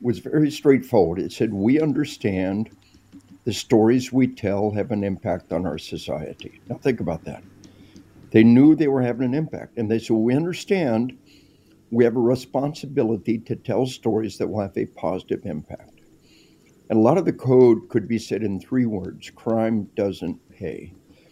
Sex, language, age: male, English, 60-79